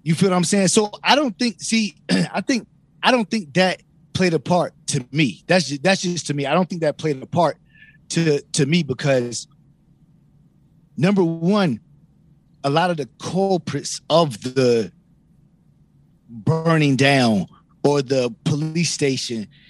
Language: English